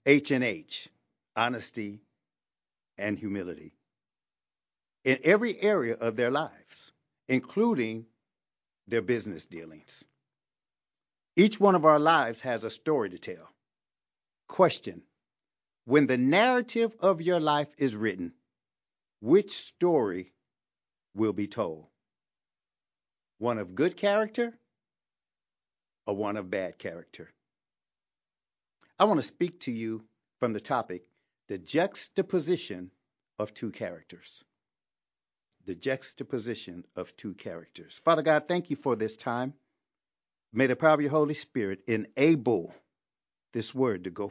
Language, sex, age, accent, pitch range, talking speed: English, male, 60-79, American, 100-155 Hz, 115 wpm